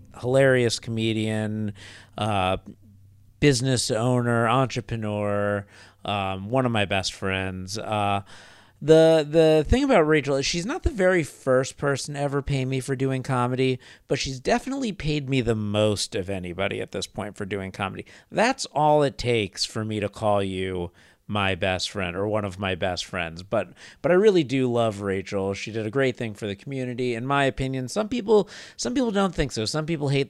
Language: English